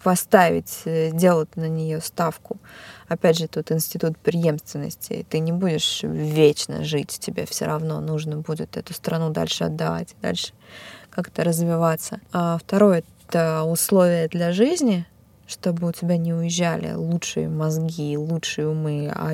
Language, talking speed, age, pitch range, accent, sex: Russian, 135 wpm, 20-39, 160-195 Hz, native, female